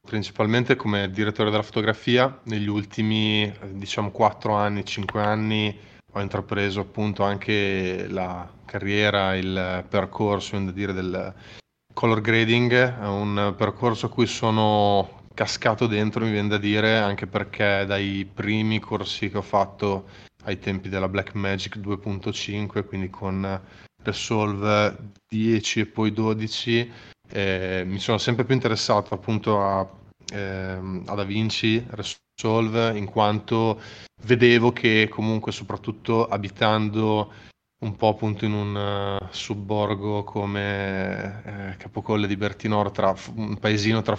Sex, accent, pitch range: male, native, 100-110 Hz